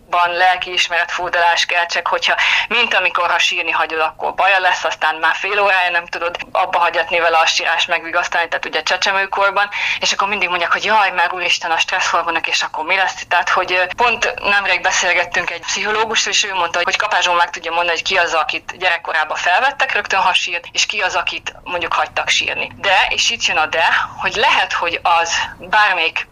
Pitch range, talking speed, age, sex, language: 170-200 Hz, 195 wpm, 30-49, female, Hungarian